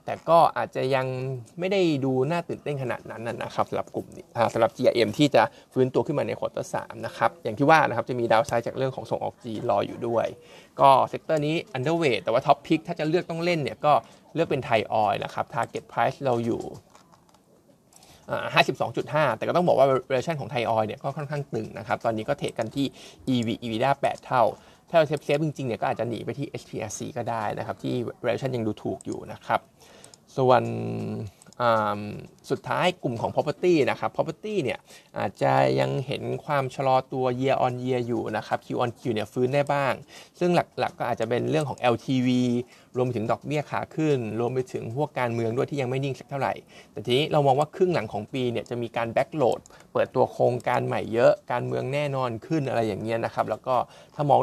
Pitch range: 115-145 Hz